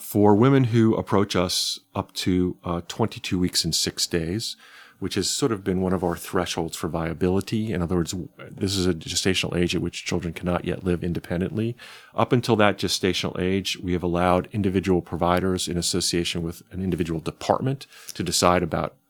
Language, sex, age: English, male, 40-59